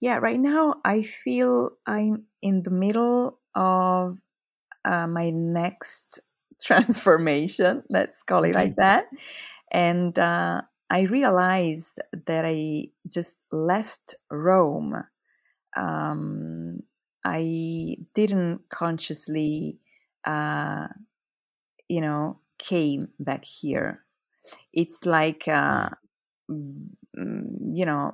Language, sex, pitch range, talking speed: English, female, 145-185 Hz, 90 wpm